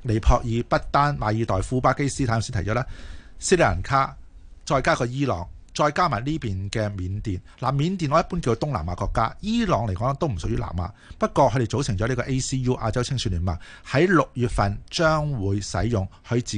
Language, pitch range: Chinese, 95-135 Hz